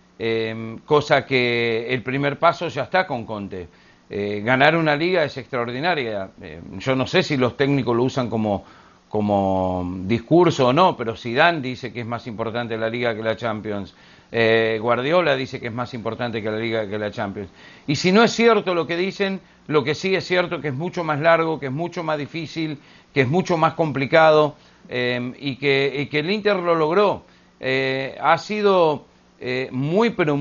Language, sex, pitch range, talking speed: Spanish, male, 120-170 Hz, 195 wpm